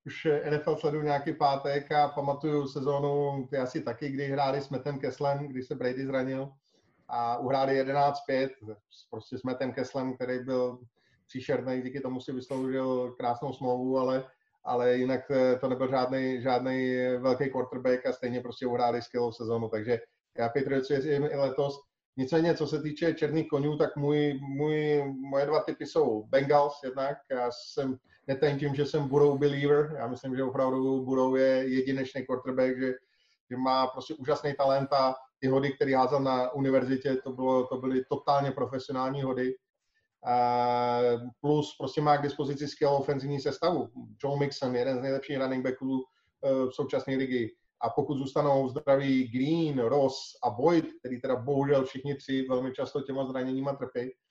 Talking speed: 160 wpm